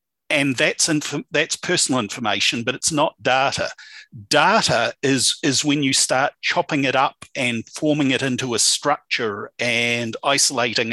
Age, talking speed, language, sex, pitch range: 50-69, 145 wpm, English, male, 125-155 Hz